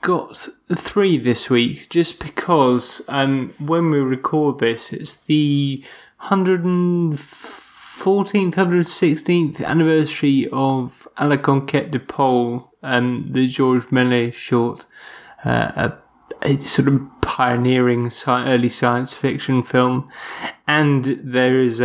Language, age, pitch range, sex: English, 20-39, 120-140 Hz, male